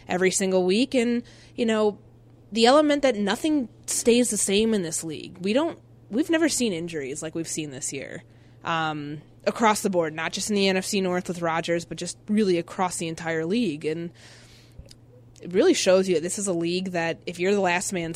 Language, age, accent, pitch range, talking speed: English, 20-39, American, 165-195 Hz, 205 wpm